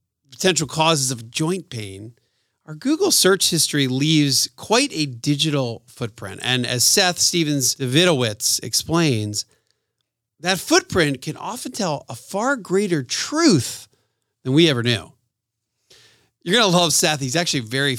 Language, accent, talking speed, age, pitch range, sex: English, American, 135 wpm, 40-59, 125-175 Hz, male